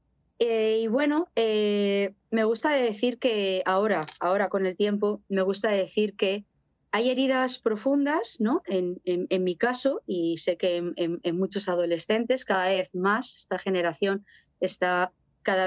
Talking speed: 155 wpm